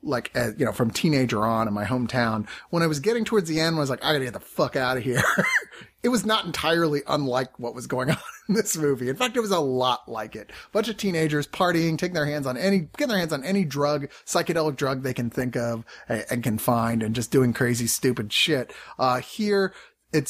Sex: male